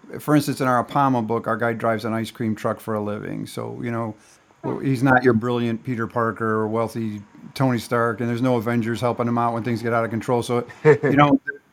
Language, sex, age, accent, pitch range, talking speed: English, male, 40-59, American, 115-135 Hz, 230 wpm